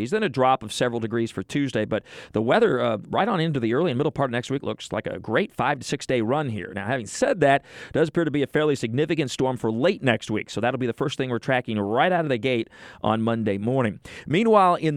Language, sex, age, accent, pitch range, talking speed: English, male, 40-59, American, 115-155 Hz, 275 wpm